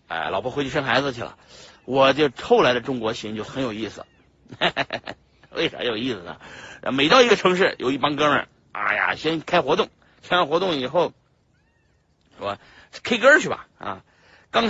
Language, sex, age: Chinese, male, 50-69